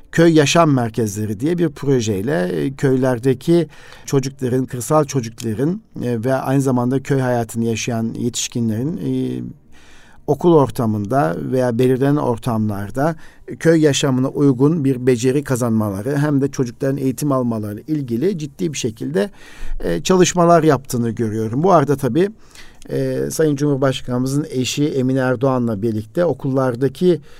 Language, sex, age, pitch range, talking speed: Turkish, male, 50-69, 115-145 Hz, 110 wpm